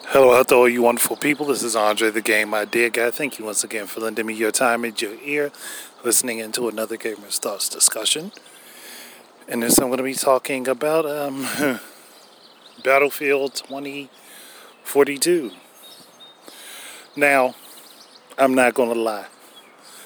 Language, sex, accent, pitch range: English, male, American, 125-160 Hz